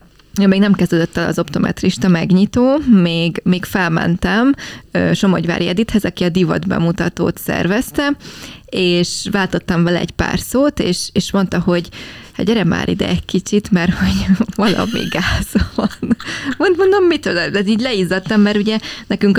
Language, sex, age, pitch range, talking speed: Hungarian, female, 20-39, 175-210 Hz, 140 wpm